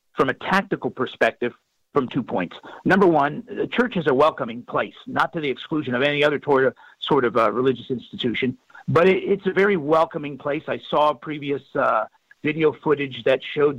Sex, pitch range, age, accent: male, 135-165 Hz, 50-69, American